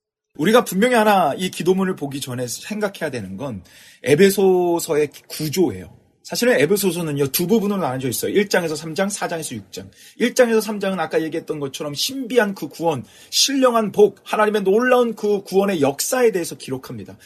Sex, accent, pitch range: male, native, 130-205 Hz